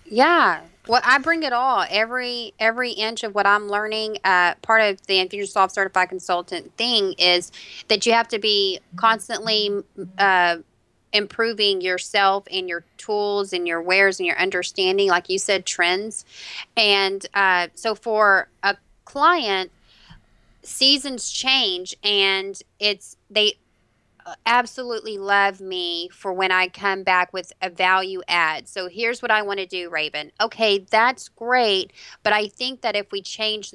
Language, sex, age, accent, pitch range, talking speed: English, female, 30-49, American, 185-220 Hz, 150 wpm